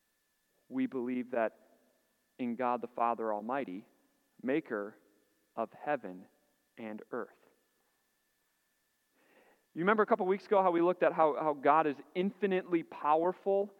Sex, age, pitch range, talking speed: male, 40-59, 145-220 Hz, 125 wpm